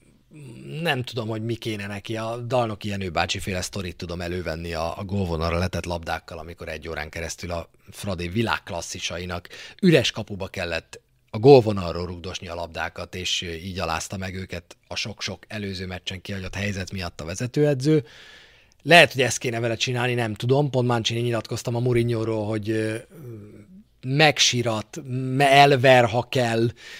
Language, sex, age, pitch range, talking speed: Hungarian, male, 30-49, 90-125 Hz, 140 wpm